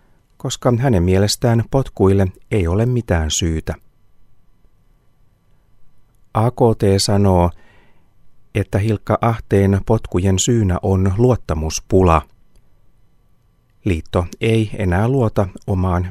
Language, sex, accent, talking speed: Finnish, male, native, 80 wpm